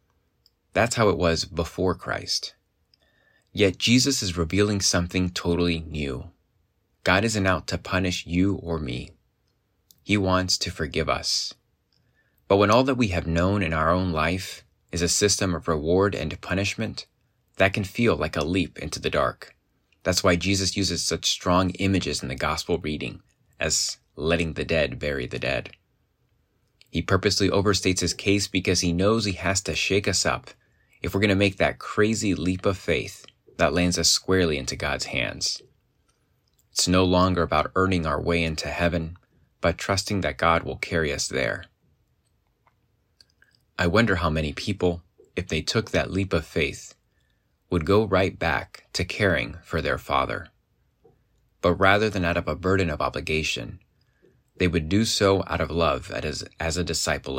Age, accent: 20-39, American